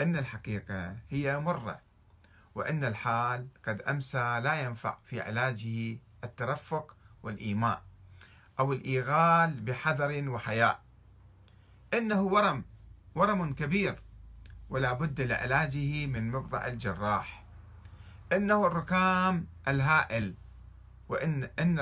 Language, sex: Arabic, male